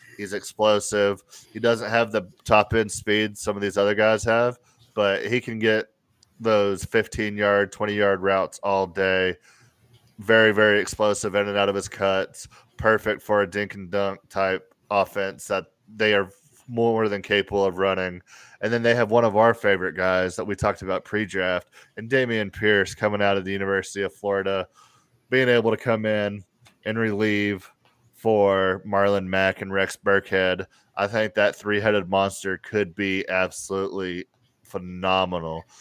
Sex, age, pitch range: male, 20-39, 95-110 Hz